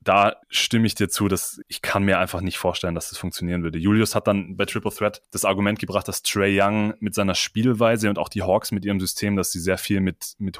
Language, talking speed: German, 250 wpm